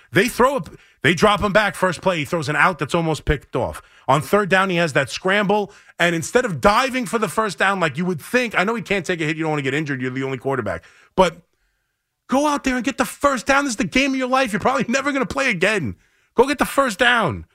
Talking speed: 275 wpm